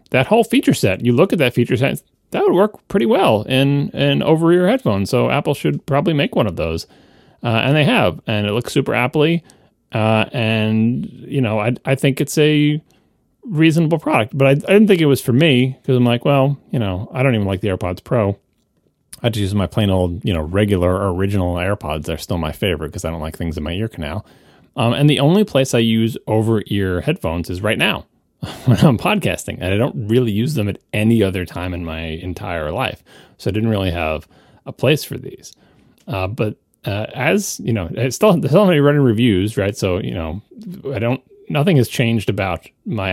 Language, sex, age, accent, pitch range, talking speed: English, male, 30-49, American, 95-140 Hz, 215 wpm